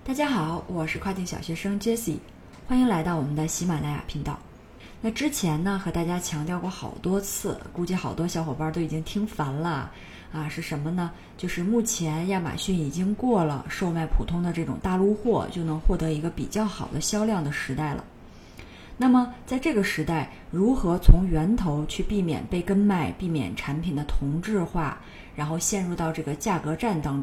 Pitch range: 160-210 Hz